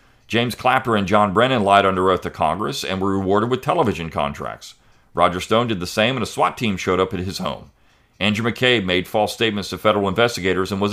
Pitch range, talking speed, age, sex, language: 95-120 Hz, 220 wpm, 40-59, male, English